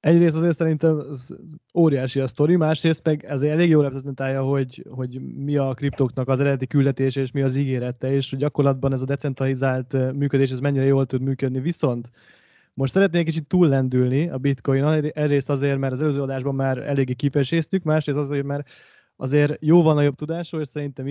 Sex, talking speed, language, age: male, 180 wpm, Hungarian, 20-39